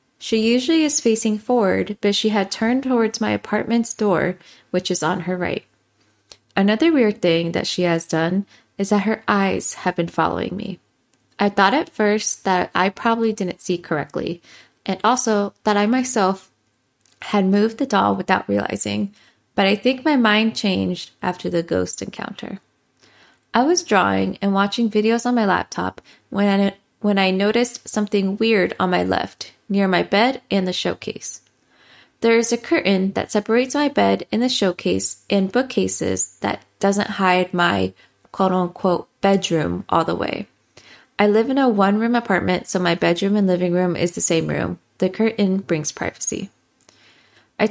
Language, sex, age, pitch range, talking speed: English, female, 20-39, 180-225 Hz, 165 wpm